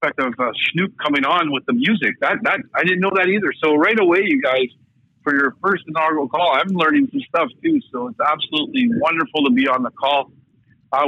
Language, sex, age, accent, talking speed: English, male, 50-69, American, 215 wpm